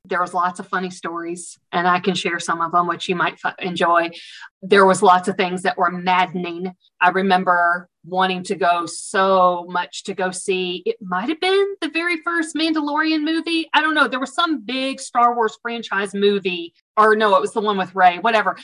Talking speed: 205 wpm